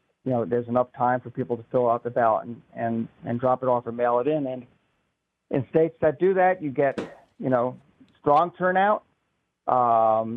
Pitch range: 120-140 Hz